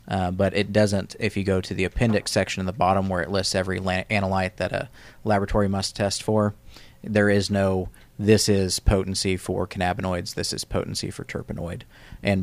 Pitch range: 95-100 Hz